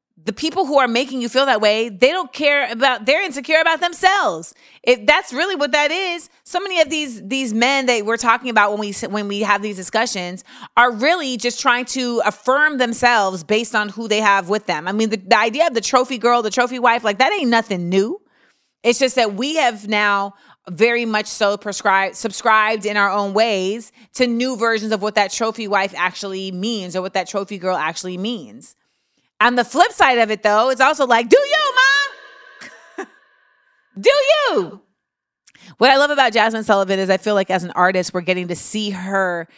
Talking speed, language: 210 wpm, English